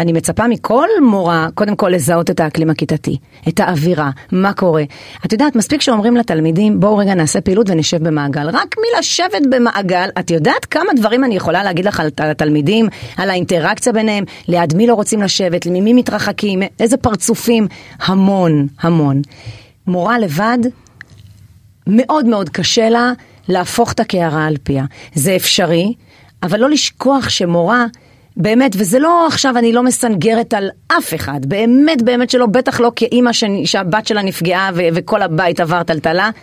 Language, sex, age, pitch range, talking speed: Hebrew, female, 40-59, 165-230 Hz, 155 wpm